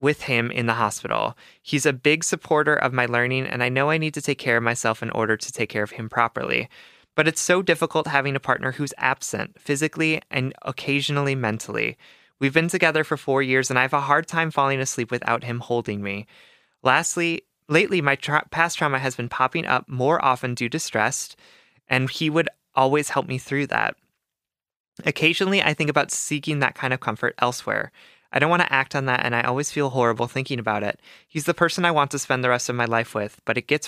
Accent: American